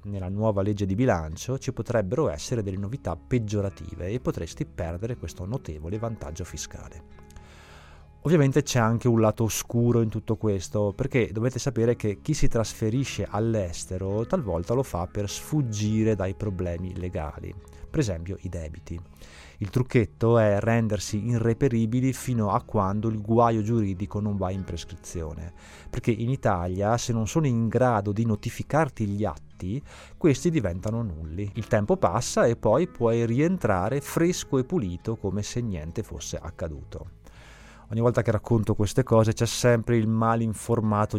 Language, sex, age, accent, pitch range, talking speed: Italian, male, 20-39, native, 95-120 Hz, 150 wpm